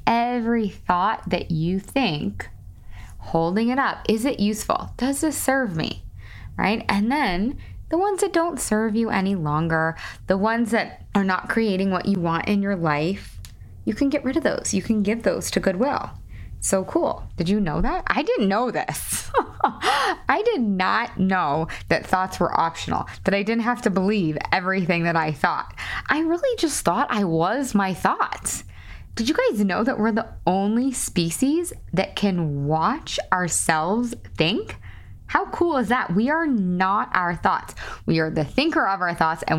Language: English